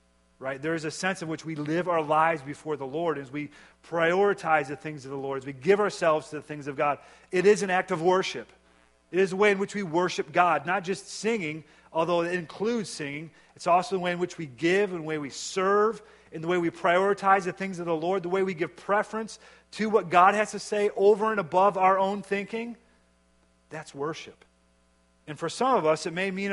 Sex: male